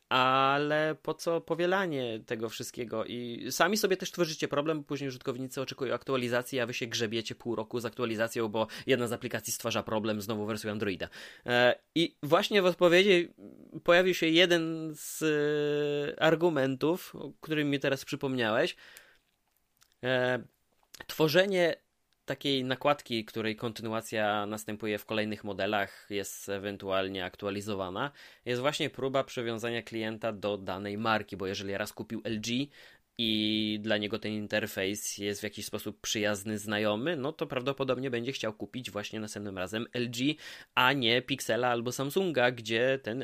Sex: male